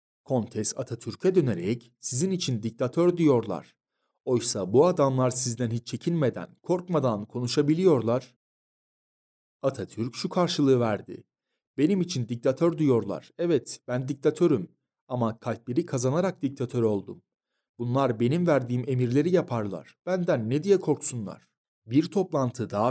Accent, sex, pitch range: native, male, 115-150 Hz